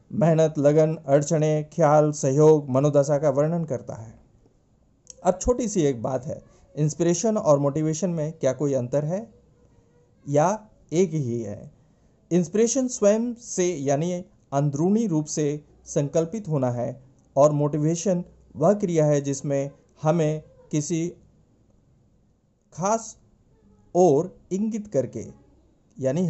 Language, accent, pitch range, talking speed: Hindi, native, 135-175 Hz, 115 wpm